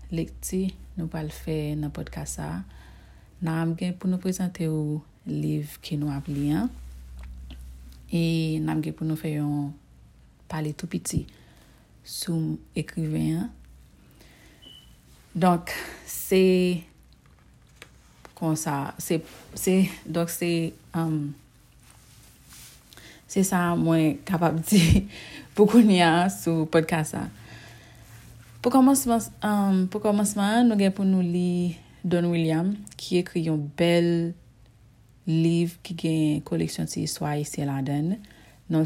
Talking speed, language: 115 wpm, French